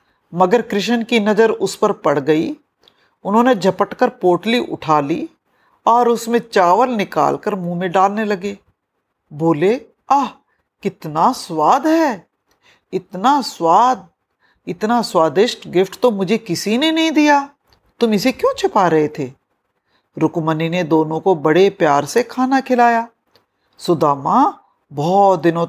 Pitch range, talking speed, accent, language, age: 170-250 Hz, 130 wpm, native, Hindi, 50-69